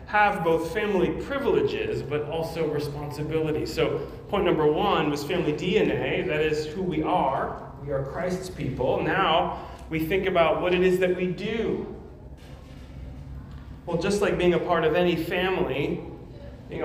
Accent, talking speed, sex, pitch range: American, 155 wpm, male, 135-175 Hz